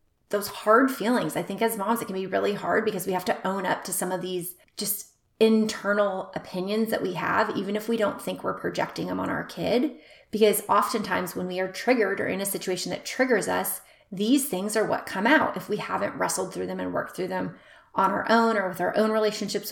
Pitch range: 185-225 Hz